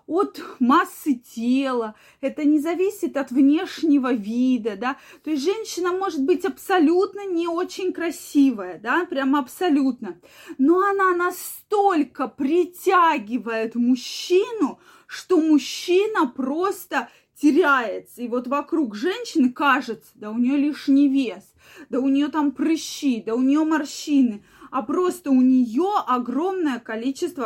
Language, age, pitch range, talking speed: Russian, 20-39, 255-335 Hz, 120 wpm